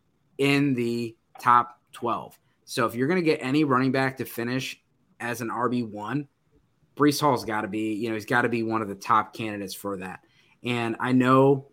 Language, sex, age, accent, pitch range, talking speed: English, male, 20-39, American, 115-140 Hz, 210 wpm